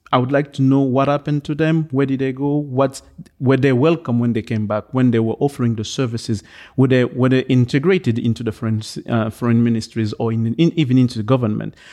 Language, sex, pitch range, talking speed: English, male, 120-140 Hz, 225 wpm